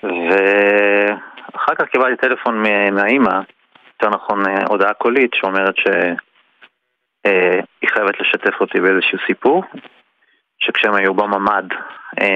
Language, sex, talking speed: Hebrew, male, 100 wpm